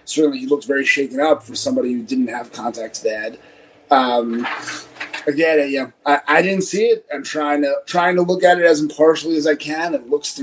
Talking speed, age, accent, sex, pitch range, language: 230 wpm, 30-49, American, male, 130-170 Hz, English